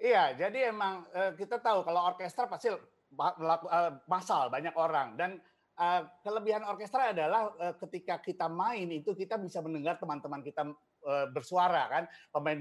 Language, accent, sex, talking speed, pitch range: English, Indonesian, male, 135 wpm, 160-195 Hz